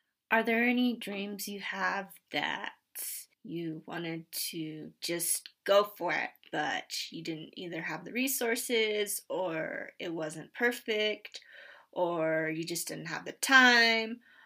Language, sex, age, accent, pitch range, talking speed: English, female, 20-39, American, 175-225 Hz, 135 wpm